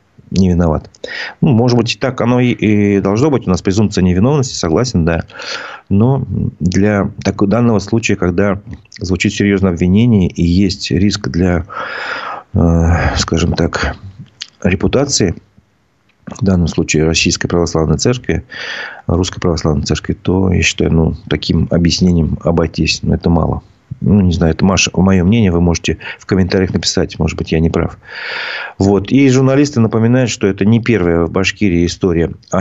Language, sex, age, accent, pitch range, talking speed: Russian, male, 40-59, native, 90-105 Hz, 145 wpm